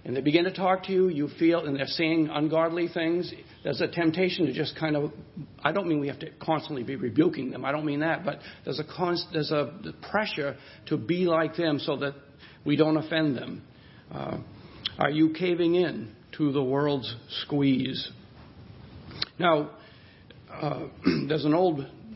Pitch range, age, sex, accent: 145-175 Hz, 60-79, male, American